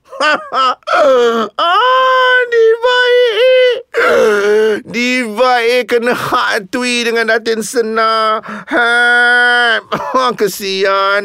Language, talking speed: Malay, 65 wpm